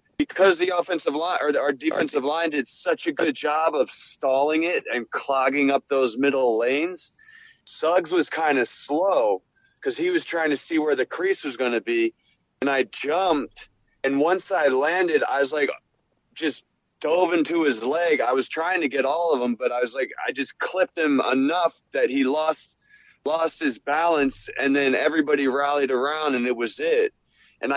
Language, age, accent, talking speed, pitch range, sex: English, 30-49, American, 190 wpm, 135-180 Hz, male